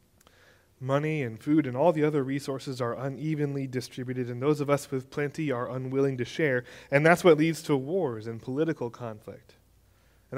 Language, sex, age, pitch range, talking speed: English, male, 20-39, 120-150 Hz, 180 wpm